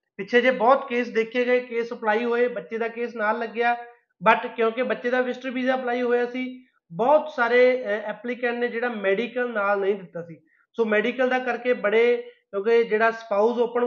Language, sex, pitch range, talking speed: Punjabi, male, 220-250 Hz, 180 wpm